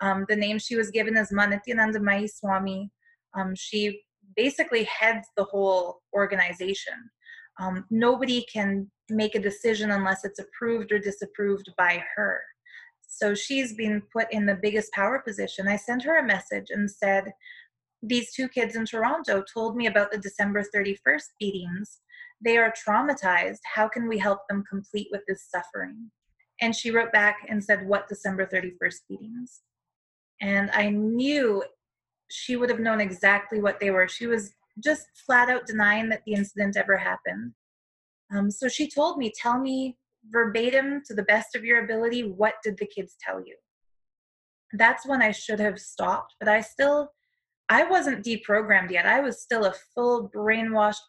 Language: English